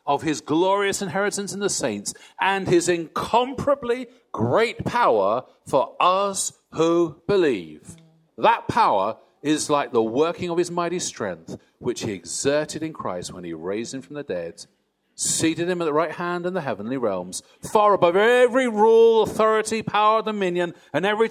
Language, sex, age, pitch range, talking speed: English, male, 50-69, 130-195 Hz, 160 wpm